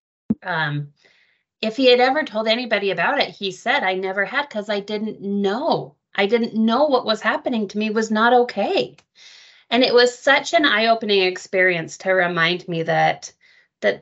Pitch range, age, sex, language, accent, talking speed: 180-230 Hz, 30-49, female, English, American, 175 wpm